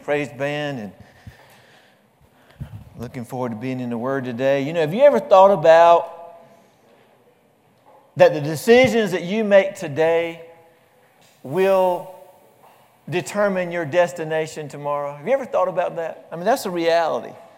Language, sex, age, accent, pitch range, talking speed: English, male, 50-69, American, 170-205 Hz, 140 wpm